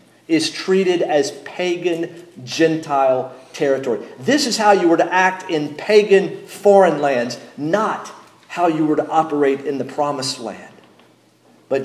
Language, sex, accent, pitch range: English, male, American, 140-180 Hz